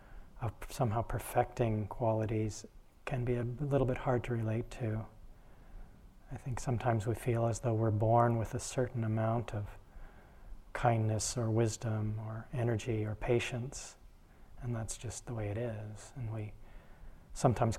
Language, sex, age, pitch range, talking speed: English, male, 30-49, 110-120 Hz, 150 wpm